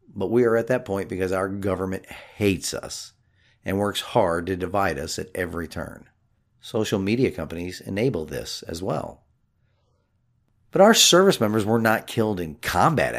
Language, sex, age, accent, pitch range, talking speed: English, male, 40-59, American, 95-115 Hz, 165 wpm